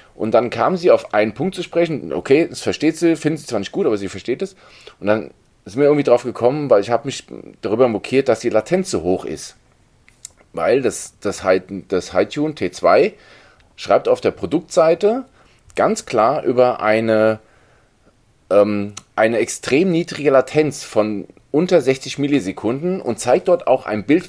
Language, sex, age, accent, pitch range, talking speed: German, male, 40-59, German, 105-160 Hz, 175 wpm